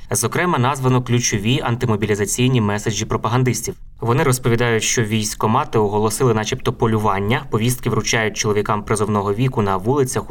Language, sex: Ukrainian, male